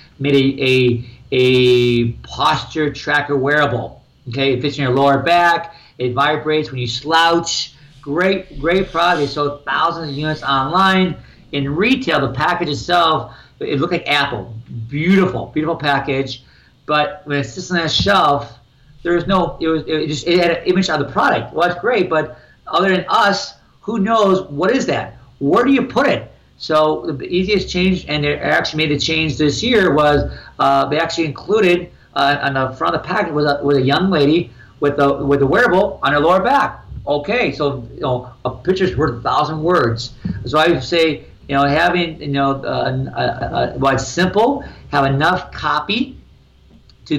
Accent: American